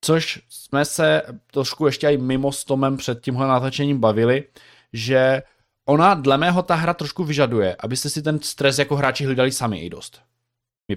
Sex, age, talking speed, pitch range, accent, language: male, 20-39, 170 wpm, 120-140 Hz, native, Czech